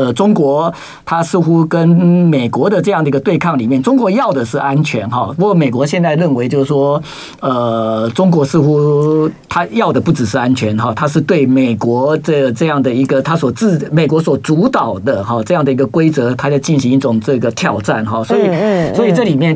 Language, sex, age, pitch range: Chinese, male, 50-69, 130-160 Hz